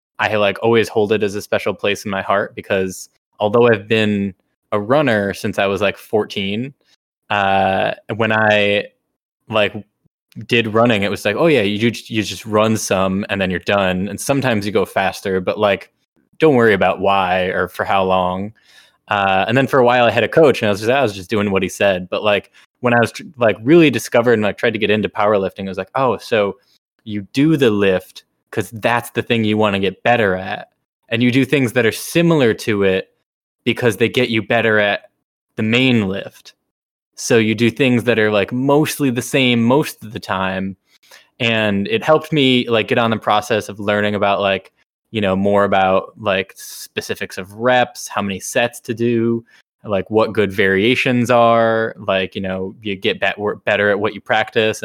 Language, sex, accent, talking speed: English, male, American, 200 wpm